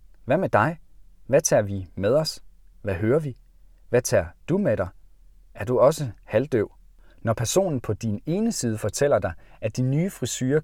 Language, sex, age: Danish, male, 40-59